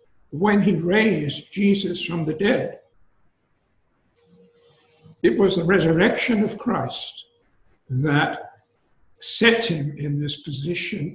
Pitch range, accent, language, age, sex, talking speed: 150-195 Hz, American, English, 60-79, male, 100 wpm